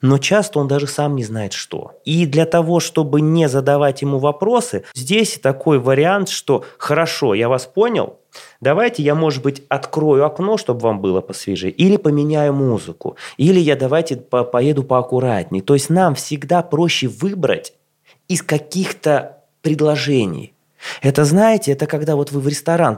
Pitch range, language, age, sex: 135-180 Hz, Russian, 20-39, male